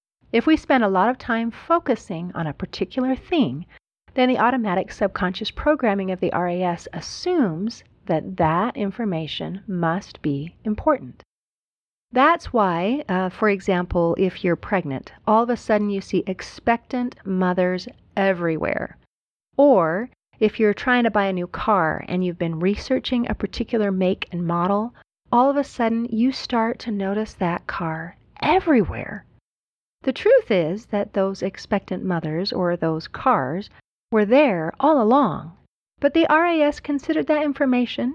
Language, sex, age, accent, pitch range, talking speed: English, female, 40-59, American, 180-255 Hz, 145 wpm